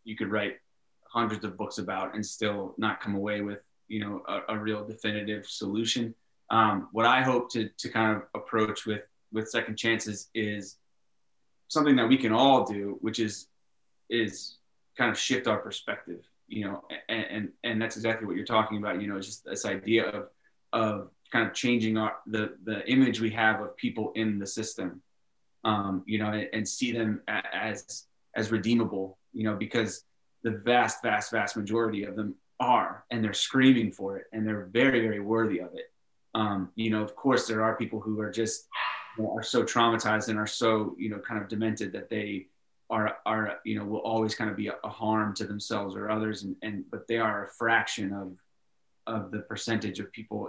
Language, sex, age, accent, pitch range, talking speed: English, male, 20-39, American, 105-115 Hz, 200 wpm